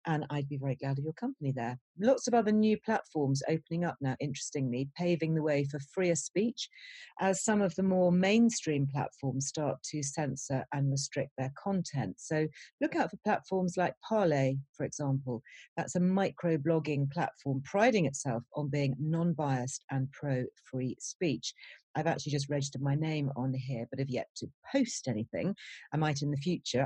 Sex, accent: female, British